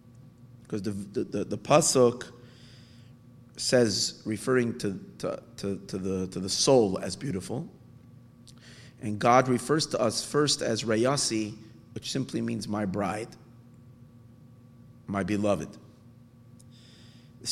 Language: English